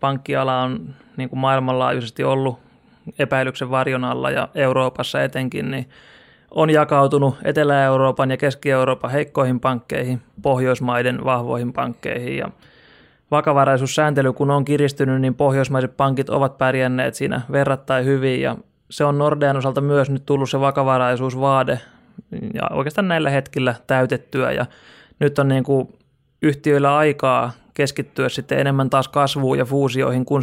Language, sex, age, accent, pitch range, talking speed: Finnish, male, 20-39, native, 130-145 Hz, 130 wpm